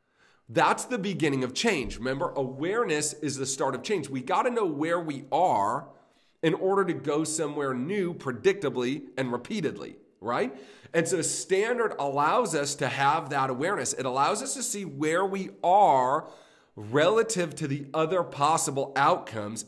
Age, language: 40-59, English